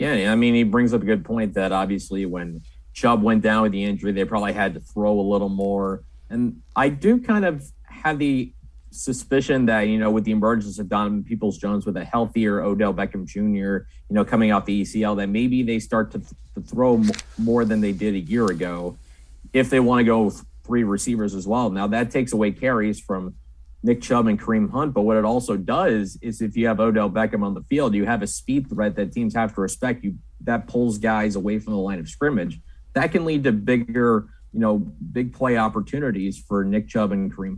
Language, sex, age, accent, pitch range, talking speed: English, male, 30-49, American, 100-125 Hz, 225 wpm